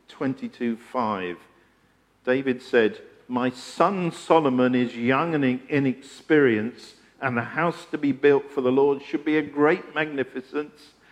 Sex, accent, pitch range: male, British, 125-170 Hz